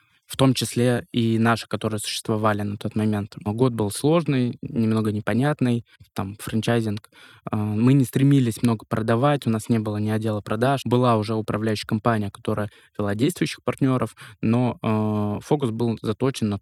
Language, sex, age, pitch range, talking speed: Russian, male, 20-39, 105-120 Hz, 150 wpm